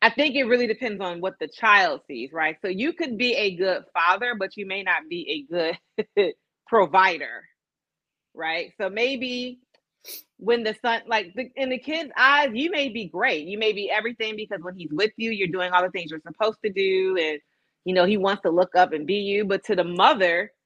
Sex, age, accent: female, 30-49, American